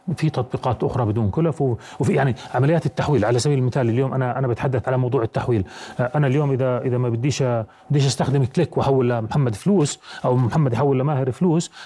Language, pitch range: Arabic, 125-155 Hz